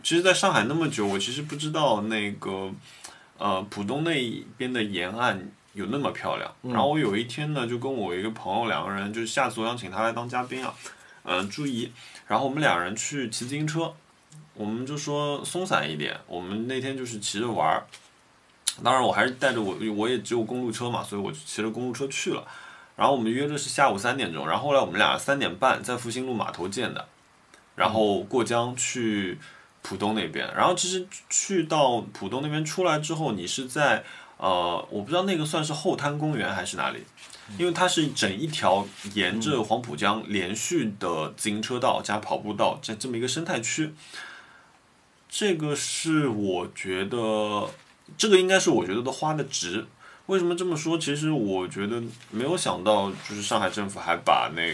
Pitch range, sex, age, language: 105-155 Hz, male, 20-39, Chinese